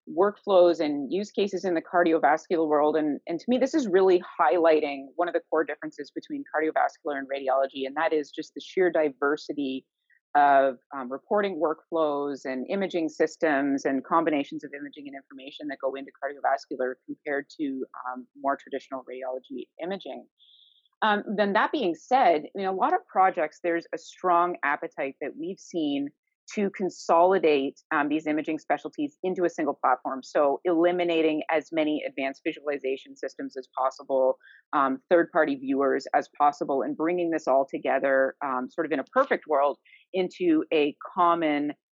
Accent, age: American, 30-49